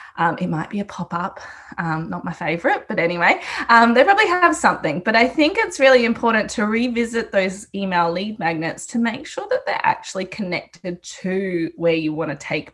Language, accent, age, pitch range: English, Australian, 20-39, 175-225 Hz